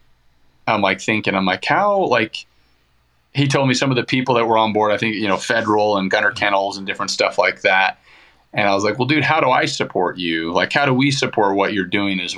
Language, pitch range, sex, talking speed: English, 95-110 Hz, male, 245 wpm